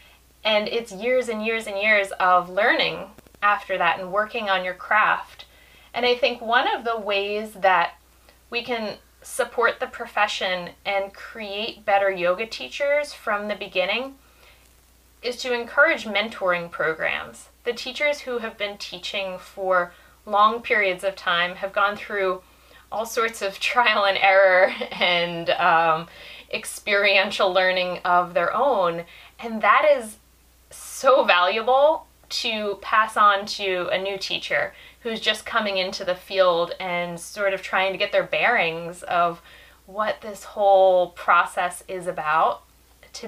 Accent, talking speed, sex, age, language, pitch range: American, 145 wpm, female, 30-49, English, 185-225 Hz